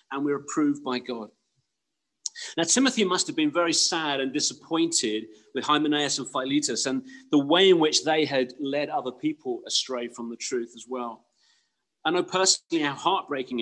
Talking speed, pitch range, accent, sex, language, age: 170 wpm, 120-165 Hz, British, male, English, 40-59